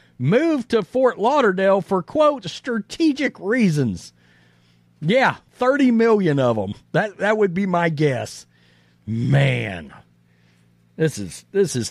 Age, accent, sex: 40-59, American, male